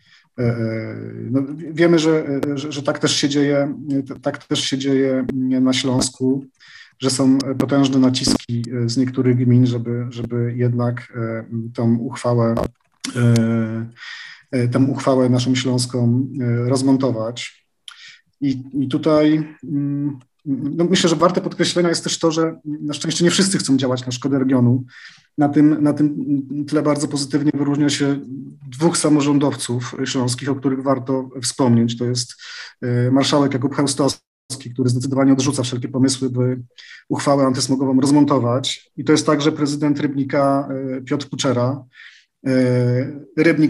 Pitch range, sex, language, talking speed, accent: 125-145 Hz, male, Polish, 130 wpm, native